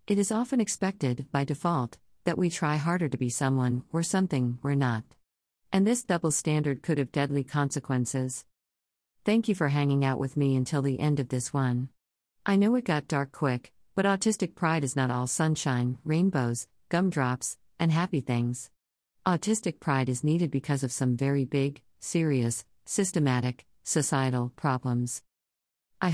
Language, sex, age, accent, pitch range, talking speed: English, female, 50-69, American, 130-175 Hz, 160 wpm